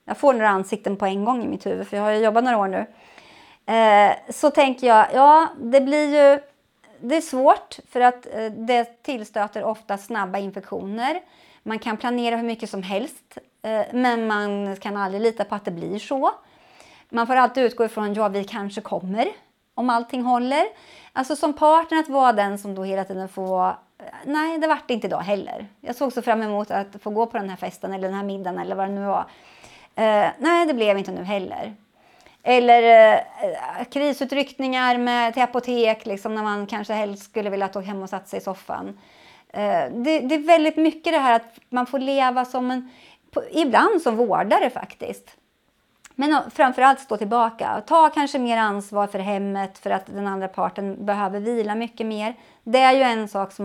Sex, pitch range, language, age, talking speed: female, 205-265 Hz, Swedish, 30-49, 195 wpm